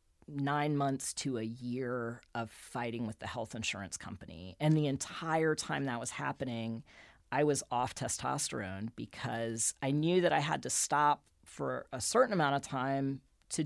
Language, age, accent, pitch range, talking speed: English, 40-59, American, 110-145 Hz, 165 wpm